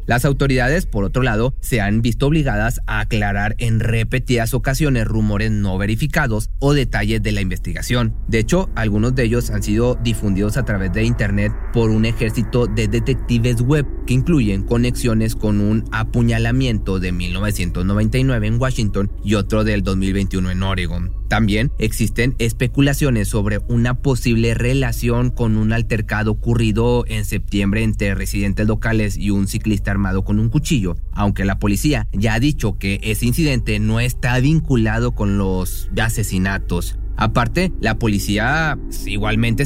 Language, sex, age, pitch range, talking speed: Spanish, male, 30-49, 100-125 Hz, 150 wpm